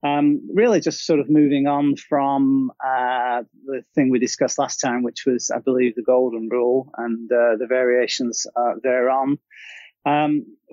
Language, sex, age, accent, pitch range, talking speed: English, male, 30-49, British, 125-145 Hz, 160 wpm